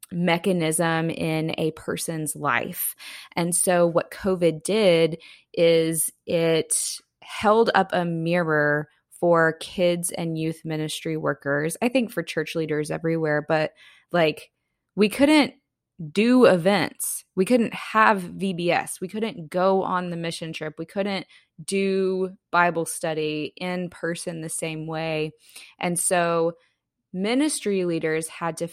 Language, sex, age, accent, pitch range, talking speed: English, female, 20-39, American, 160-195 Hz, 125 wpm